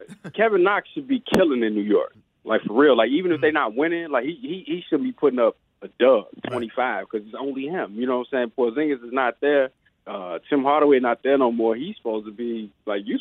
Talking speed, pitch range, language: 245 wpm, 105-135 Hz, English